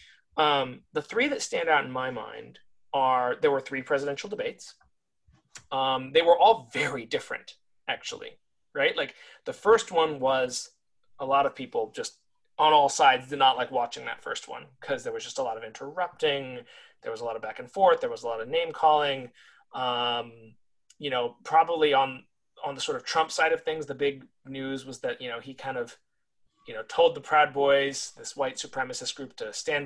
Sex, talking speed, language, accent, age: male, 205 wpm, English, American, 30-49